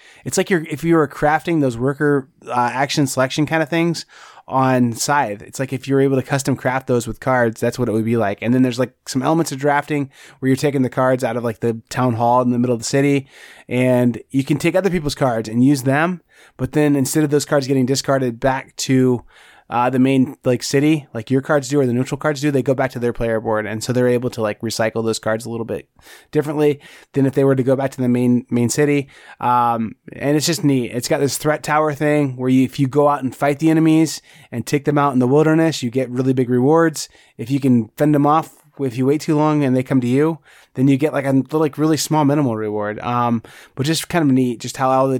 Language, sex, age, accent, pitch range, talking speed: English, male, 20-39, American, 125-145 Hz, 260 wpm